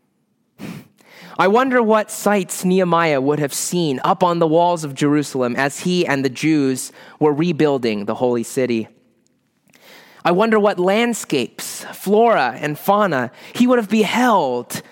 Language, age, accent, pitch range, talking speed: English, 30-49, American, 155-245 Hz, 140 wpm